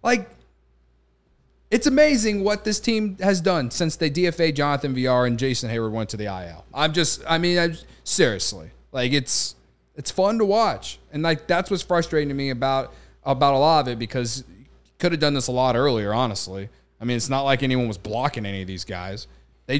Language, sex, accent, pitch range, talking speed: English, male, American, 115-170 Hz, 205 wpm